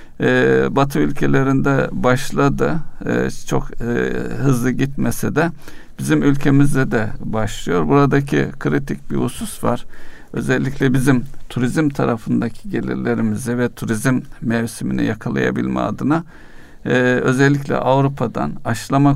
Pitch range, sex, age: 110-140 Hz, male, 60-79